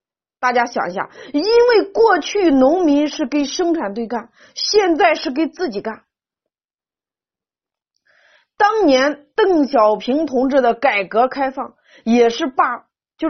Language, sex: Chinese, female